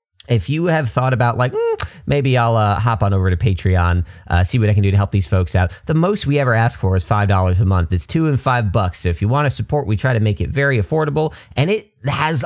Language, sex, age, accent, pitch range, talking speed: English, male, 30-49, American, 95-125 Hz, 270 wpm